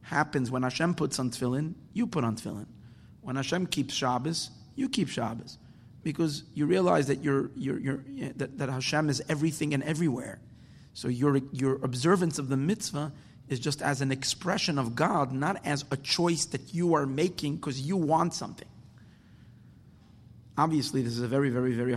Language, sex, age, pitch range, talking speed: English, male, 30-49, 125-155 Hz, 175 wpm